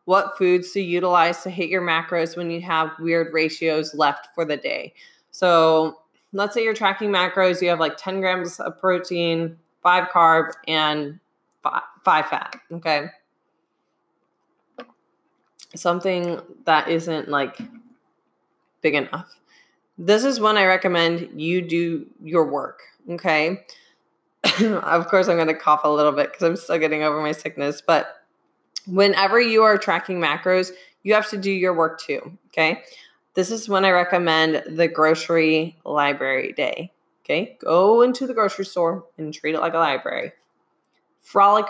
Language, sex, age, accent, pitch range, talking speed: English, female, 20-39, American, 160-205 Hz, 150 wpm